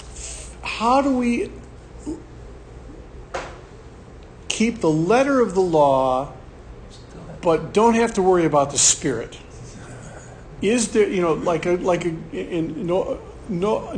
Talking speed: 115 wpm